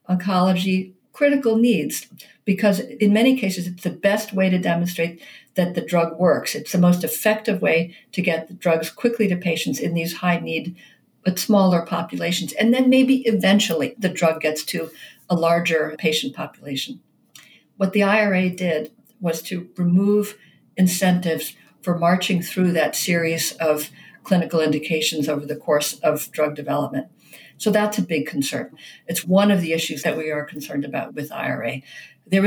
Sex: female